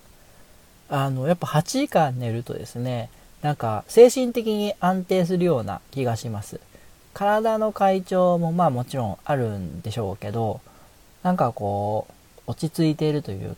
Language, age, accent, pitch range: Japanese, 40-59, native, 110-155 Hz